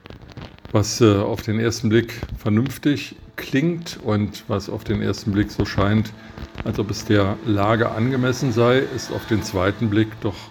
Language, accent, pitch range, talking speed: German, German, 105-120 Hz, 165 wpm